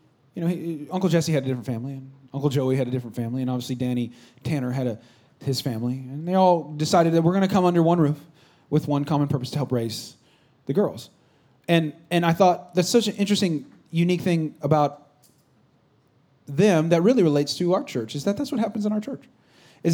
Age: 30-49